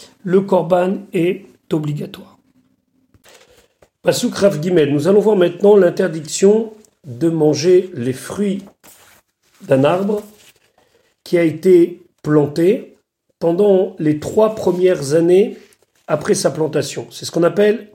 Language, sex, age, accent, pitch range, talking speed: French, male, 40-59, French, 155-205 Hz, 105 wpm